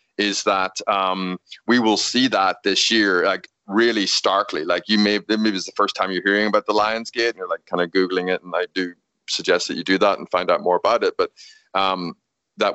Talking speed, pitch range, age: 235 wpm, 95-110 Hz, 30-49